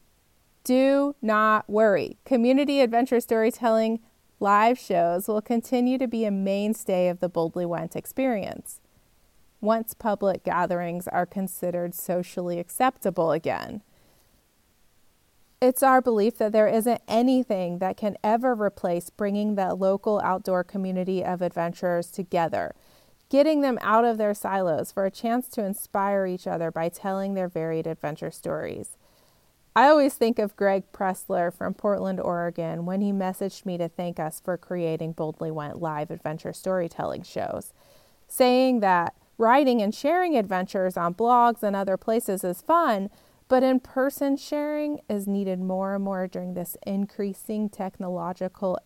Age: 30-49